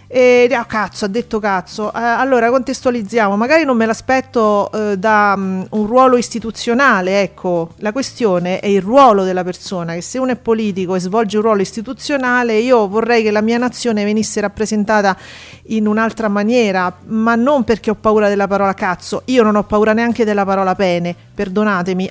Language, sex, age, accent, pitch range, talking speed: Italian, female, 40-59, native, 205-245 Hz, 175 wpm